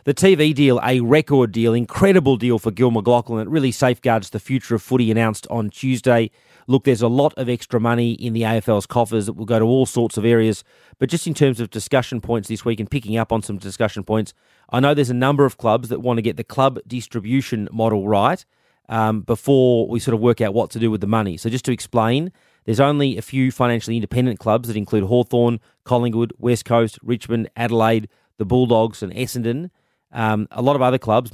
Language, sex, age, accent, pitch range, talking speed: English, male, 30-49, Australian, 110-125 Hz, 220 wpm